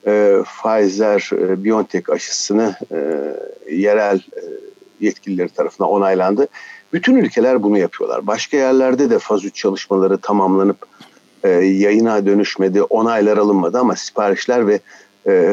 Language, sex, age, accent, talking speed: Turkish, male, 60-79, native, 110 wpm